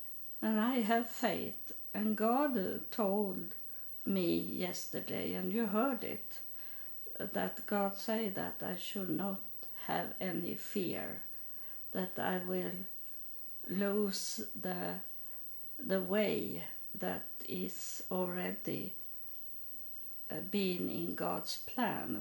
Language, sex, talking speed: English, female, 100 wpm